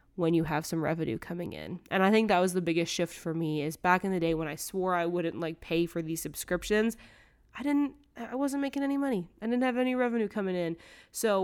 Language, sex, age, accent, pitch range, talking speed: English, female, 20-39, American, 165-215 Hz, 245 wpm